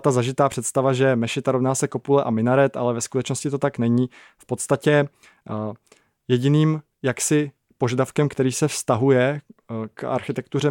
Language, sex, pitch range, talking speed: Czech, male, 120-135 Hz, 145 wpm